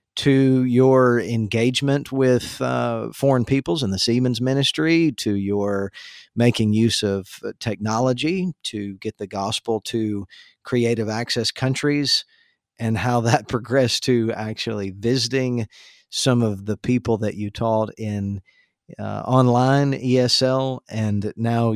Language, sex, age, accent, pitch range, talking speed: English, male, 50-69, American, 105-125 Hz, 125 wpm